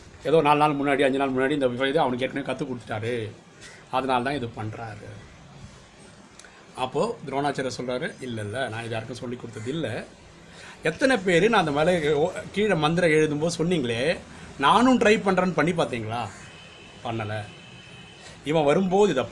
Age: 30-49